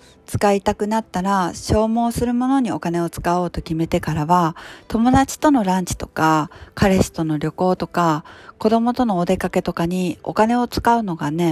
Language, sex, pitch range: Japanese, female, 165-220 Hz